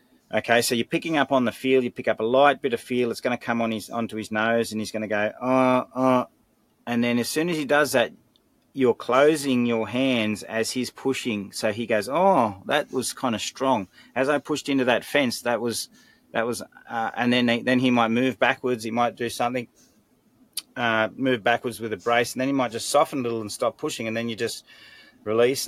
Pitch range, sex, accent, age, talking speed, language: 115-135 Hz, male, Australian, 30-49, 240 wpm, English